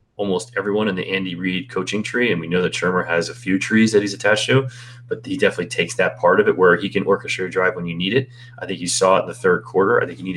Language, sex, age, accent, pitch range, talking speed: English, male, 30-49, American, 95-125 Hz, 300 wpm